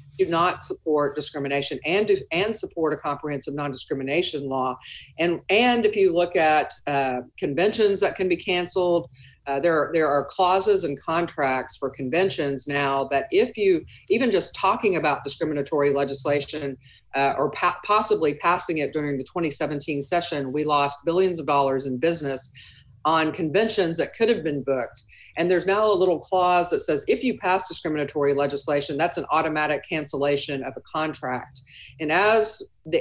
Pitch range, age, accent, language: 140-175 Hz, 40-59, American, English